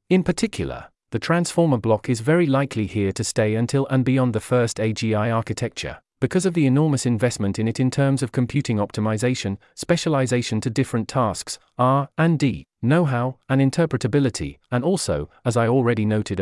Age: 40-59